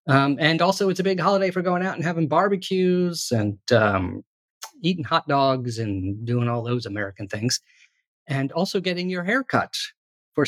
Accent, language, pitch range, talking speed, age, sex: American, English, 115-165 Hz, 180 wpm, 40-59, male